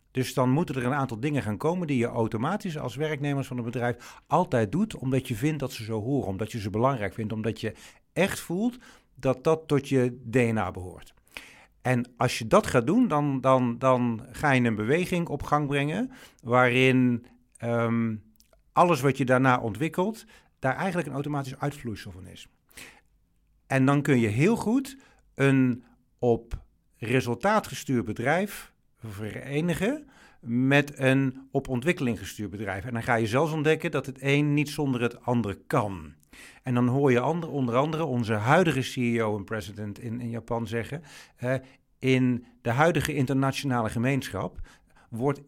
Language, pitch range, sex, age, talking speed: Dutch, 115-150 Hz, male, 50-69, 165 wpm